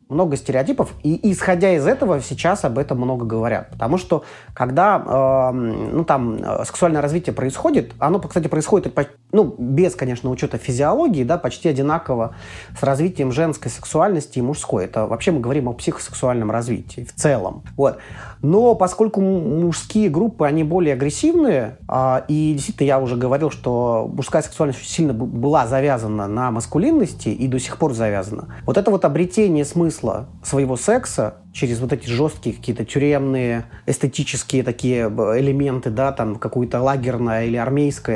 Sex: male